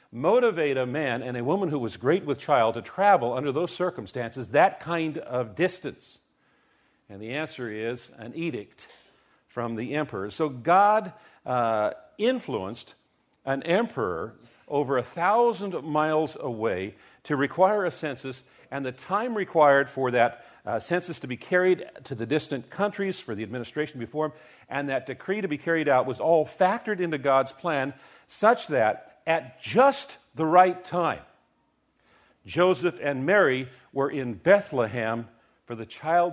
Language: English